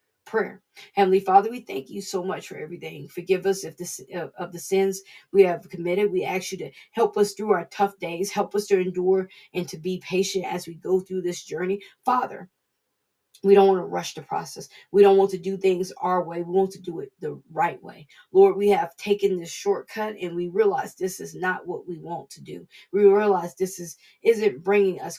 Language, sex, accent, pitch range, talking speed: English, female, American, 180-210 Hz, 220 wpm